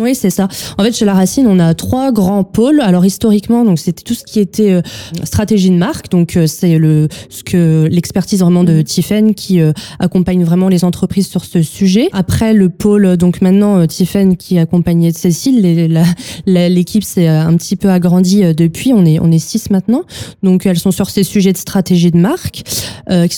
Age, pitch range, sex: 20-39, 165-200 Hz, female